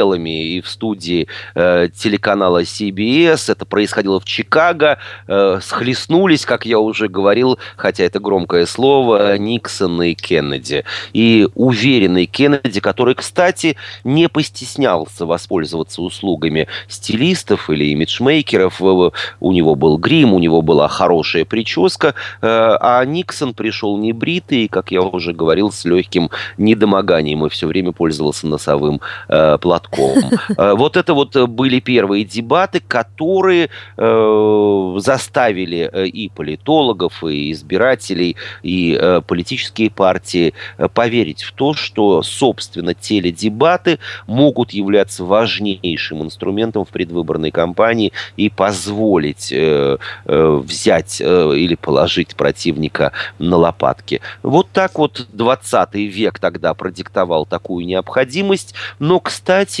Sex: male